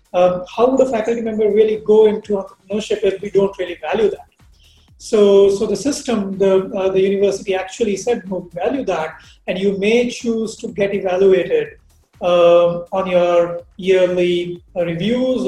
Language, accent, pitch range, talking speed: English, Indian, 185-230 Hz, 160 wpm